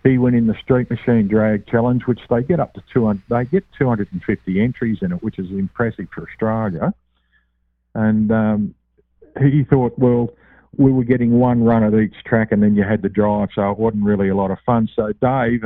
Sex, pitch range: male, 105-130 Hz